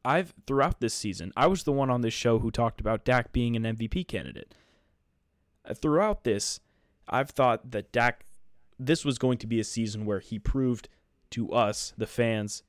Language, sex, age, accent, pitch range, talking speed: English, male, 20-39, American, 105-130 Hz, 185 wpm